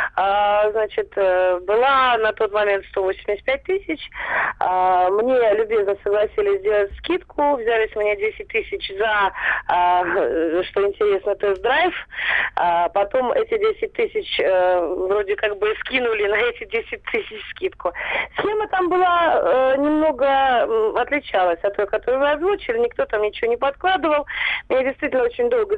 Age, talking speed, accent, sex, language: 30-49, 125 wpm, native, female, Russian